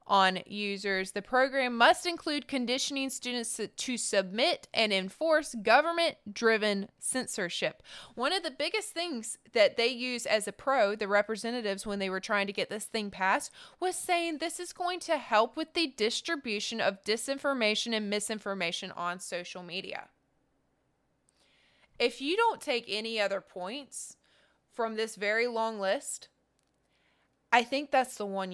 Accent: American